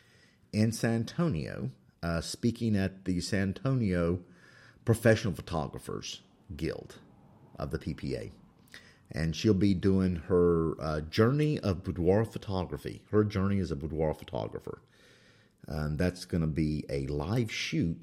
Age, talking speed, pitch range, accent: 50-69, 135 wpm, 80-110 Hz, American